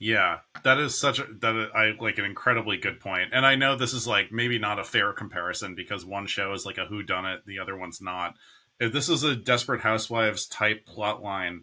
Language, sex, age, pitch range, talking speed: English, male, 30-49, 100-125 Hz, 220 wpm